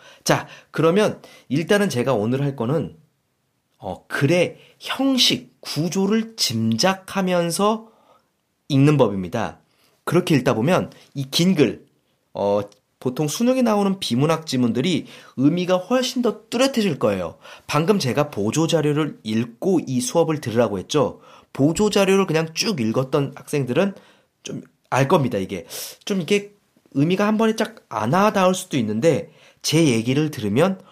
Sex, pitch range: male, 120-195 Hz